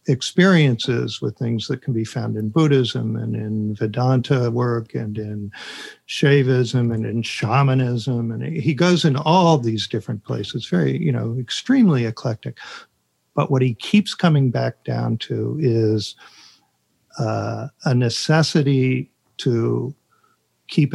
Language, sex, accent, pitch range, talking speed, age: English, male, American, 115-135 Hz, 130 wpm, 50-69